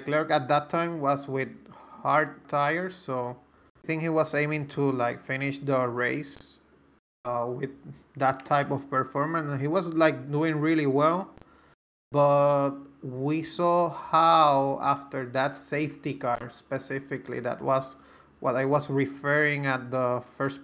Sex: male